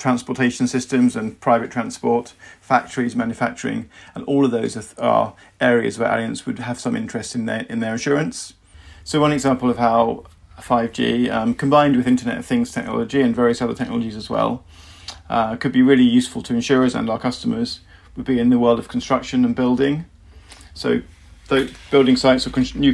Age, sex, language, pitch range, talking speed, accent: 40-59, male, English, 115-135 Hz, 180 wpm, British